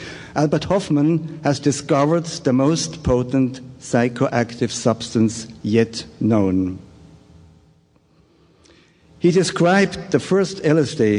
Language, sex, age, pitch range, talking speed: English, male, 60-79, 115-145 Hz, 85 wpm